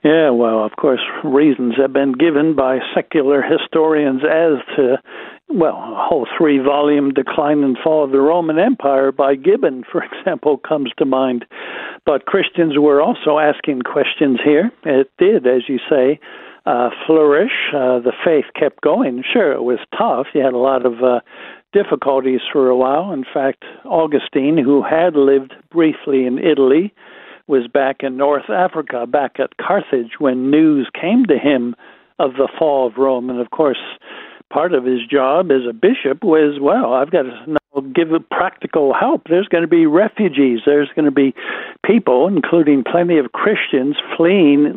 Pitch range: 135-160 Hz